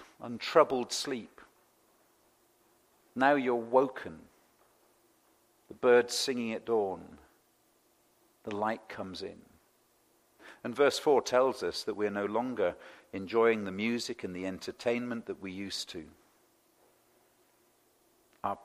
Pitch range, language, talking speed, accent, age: 100-145 Hz, English, 110 wpm, British, 50-69